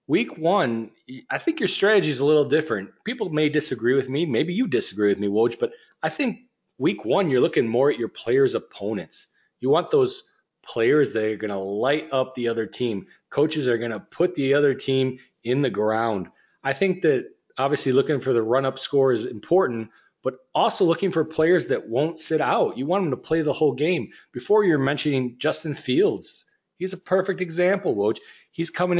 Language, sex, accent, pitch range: English, male, American, 120-180 Hz